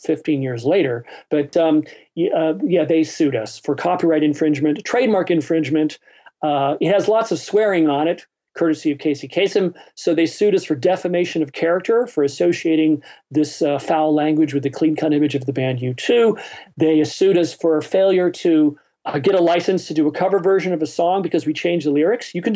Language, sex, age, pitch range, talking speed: English, male, 40-59, 140-175 Hz, 200 wpm